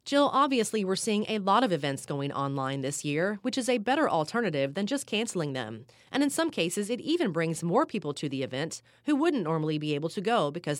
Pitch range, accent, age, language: 150-240 Hz, American, 30-49, English